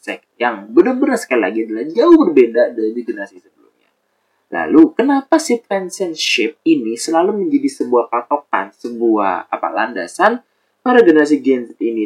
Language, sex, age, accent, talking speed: Indonesian, male, 20-39, native, 135 wpm